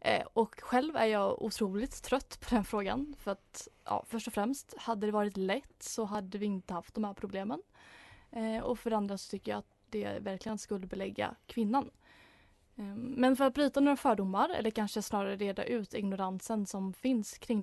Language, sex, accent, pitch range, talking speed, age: Swedish, female, native, 200-235 Hz, 185 wpm, 20-39